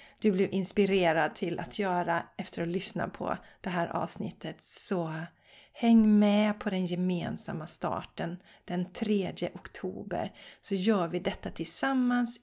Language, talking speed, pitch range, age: Swedish, 135 wpm, 180-230 Hz, 30-49